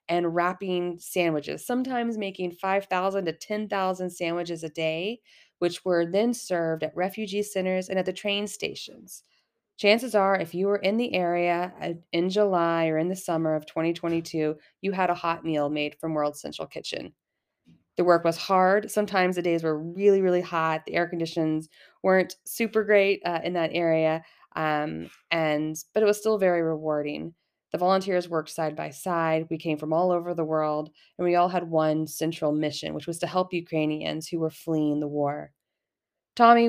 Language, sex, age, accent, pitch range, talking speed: English, female, 20-39, American, 160-190 Hz, 180 wpm